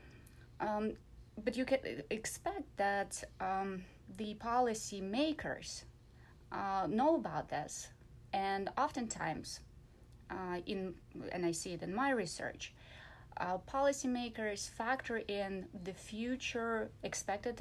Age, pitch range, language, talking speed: 30-49, 180-225 Hz, English, 110 wpm